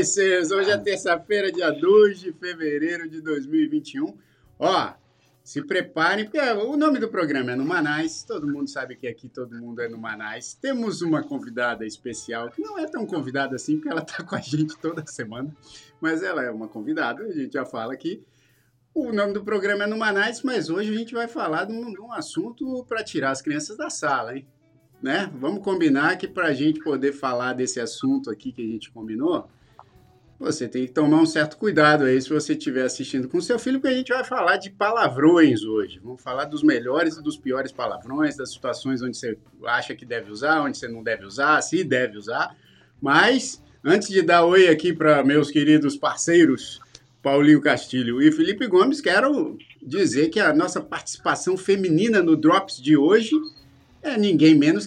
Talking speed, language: 190 wpm, Portuguese